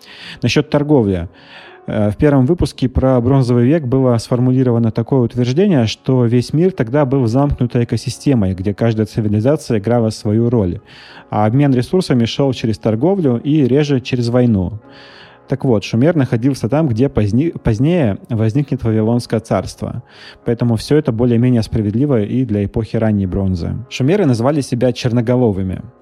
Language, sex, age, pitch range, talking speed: Russian, male, 30-49, 110-130 Hz, 135 wpm